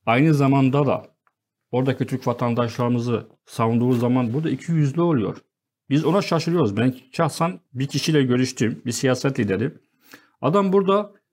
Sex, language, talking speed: male, Turkish, 130 wpm